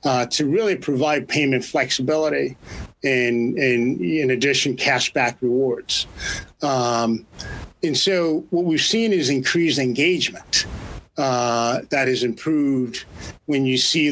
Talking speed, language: 125 wpm, English